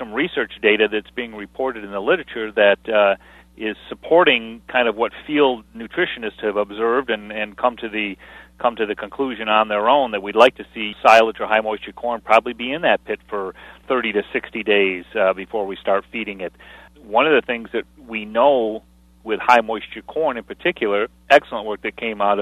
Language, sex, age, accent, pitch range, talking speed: English, male, 40-59, American, 100-120 Hz, 200 wpm